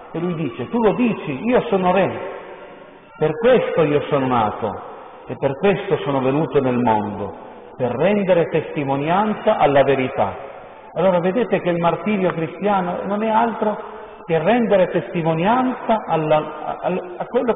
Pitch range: 165-225 Hz